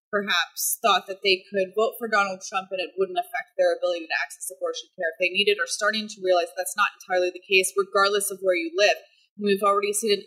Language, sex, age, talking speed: English, female, 20-39, 235 wpm